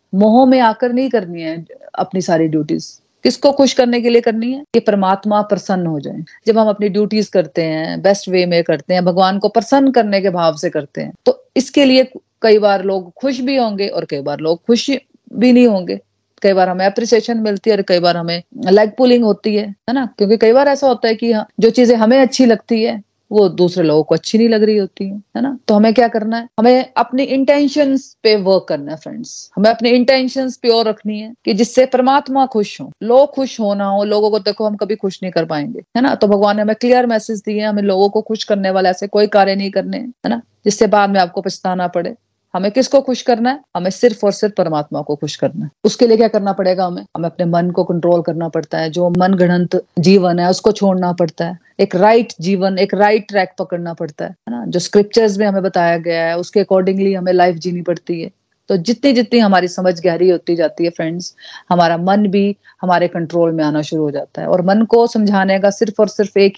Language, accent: Hindi, native